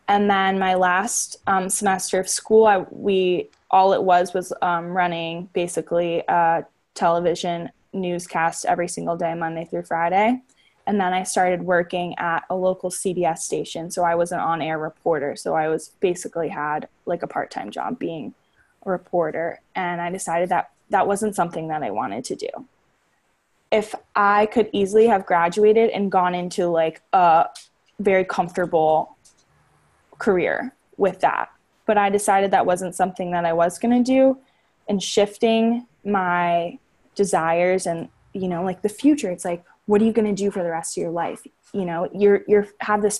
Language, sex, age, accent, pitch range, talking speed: English, female, 10-29, American, 170-205 Hz, 170 wpm